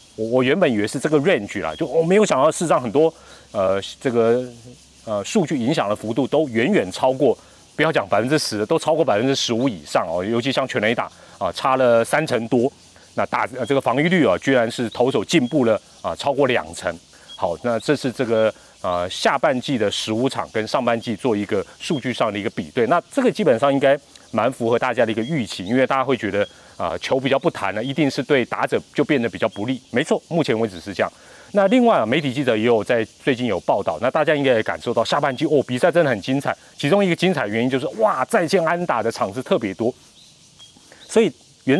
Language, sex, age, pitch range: Chinese, male, 30-49, 115-160 Hz